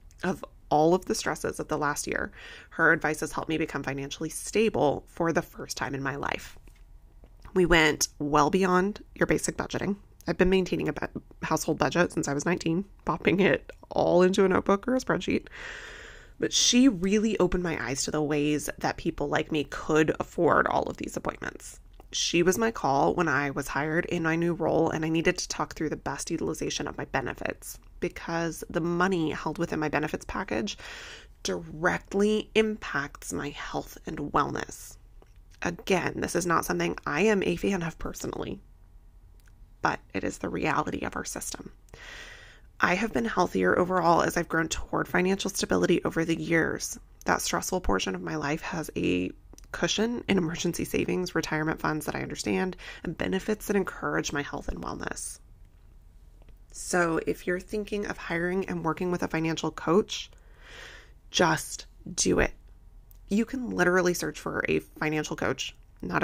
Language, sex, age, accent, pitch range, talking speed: English, female, 20-39, American, 150-185 Hz, 170 wpm